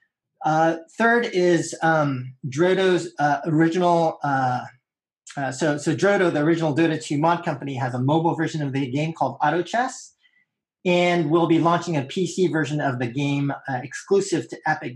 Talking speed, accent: 170 wpm, American